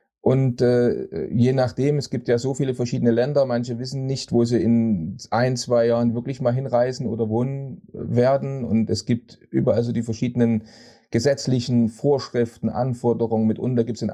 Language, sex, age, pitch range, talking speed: German, male, 30-49, 110-130 Hz, 170 wpm